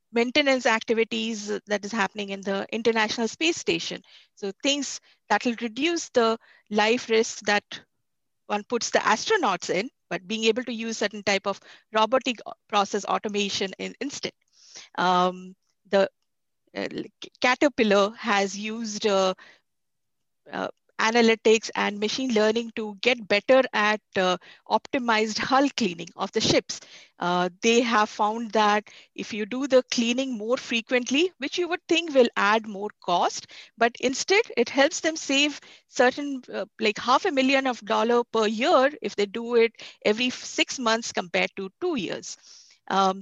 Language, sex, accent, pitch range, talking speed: English, female, Indian, 210-265 Hz, 150 wpm